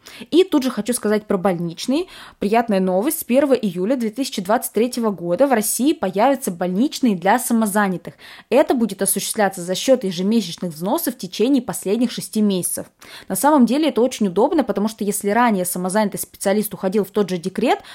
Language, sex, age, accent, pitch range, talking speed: Russian, female, 20-39, native, 195-255 Hz, 165 wpm